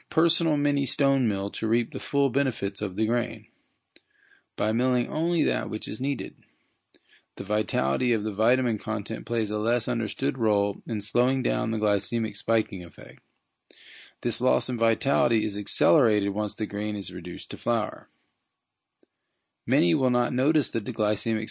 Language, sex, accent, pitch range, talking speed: English, male, American, 105-130 Hz, 155 wpm